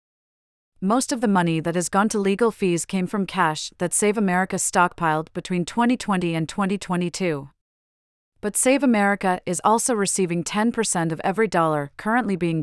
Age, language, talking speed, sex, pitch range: 40-59, English, 155 wpm, female, 165-200 Hz